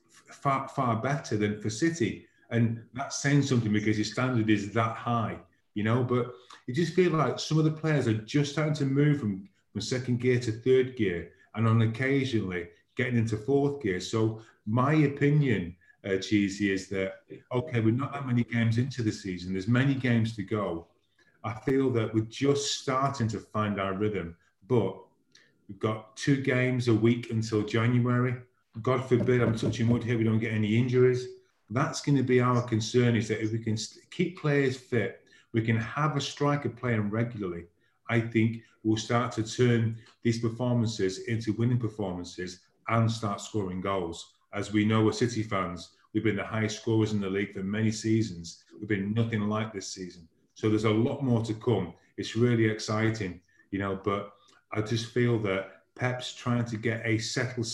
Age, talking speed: 30-49, 185 wpm